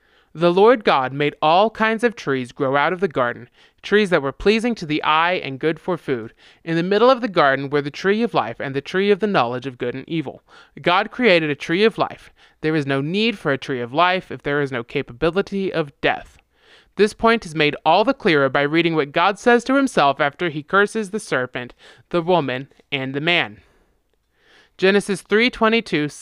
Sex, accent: male, American